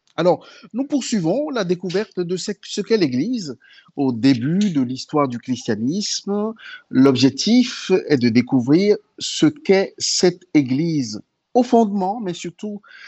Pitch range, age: 135-205 Hz, 50-69